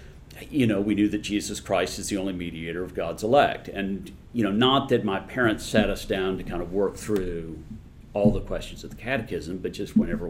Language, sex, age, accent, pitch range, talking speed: English, male, 50-69, American, 90-115 Hz, 220 wpm